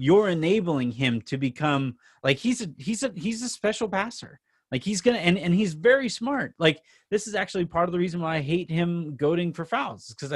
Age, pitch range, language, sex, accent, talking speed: 30-49, 140-180 Hz, English, male, American, 225 wpm